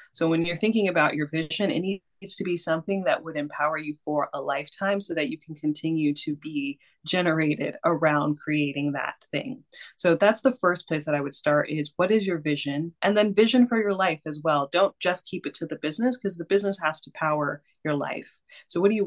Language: English